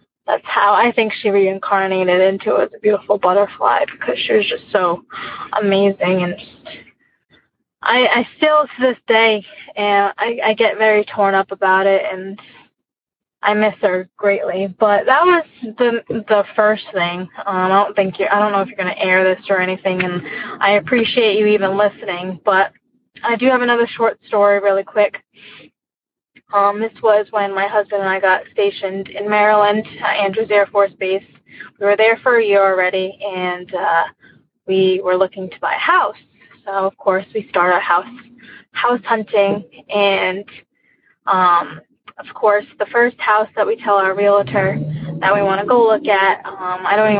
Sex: female